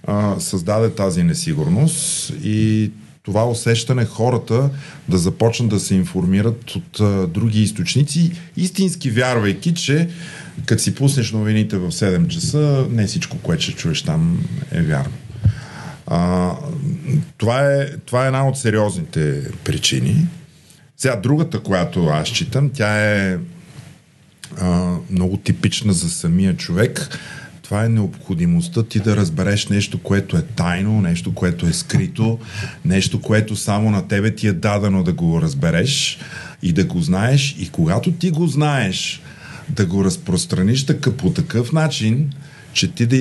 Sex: male